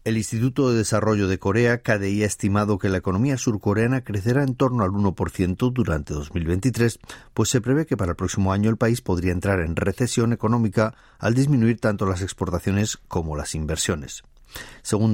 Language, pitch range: Spanish, 90-115 Hz